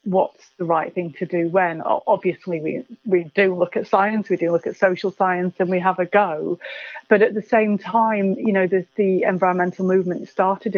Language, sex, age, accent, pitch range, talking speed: English, female, 30-49, British, 175-215 Hz, 205 wpm